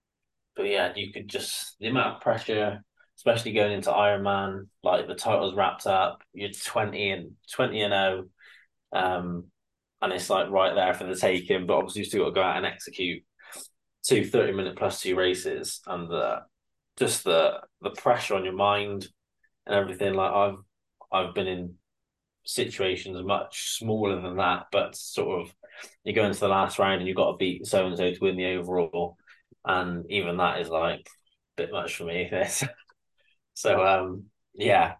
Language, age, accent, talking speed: English, 20-39, British, 180 wpm